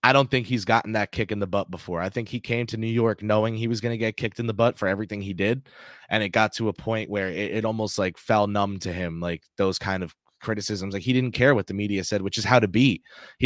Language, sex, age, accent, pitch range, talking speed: English, male, 20-39, American, 95-115 Hz, 295 wpm